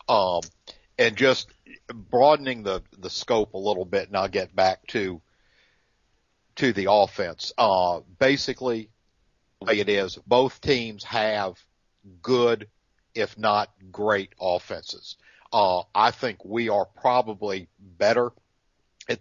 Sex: male